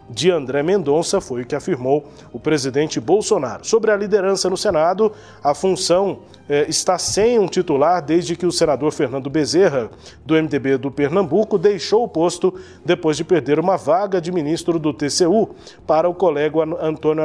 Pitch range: 145-195 Hz